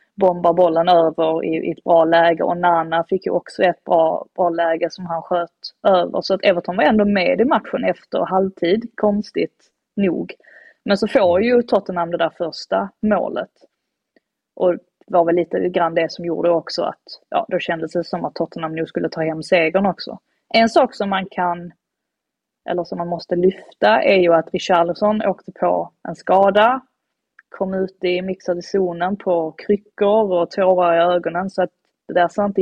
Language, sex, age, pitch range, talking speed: Swedish, female, 20-39, 175-205 Hz, 185 wpm